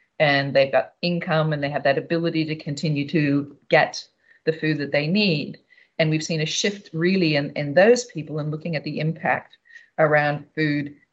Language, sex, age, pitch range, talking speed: English, female, 40-59, 145-175 Hz, 190 wpm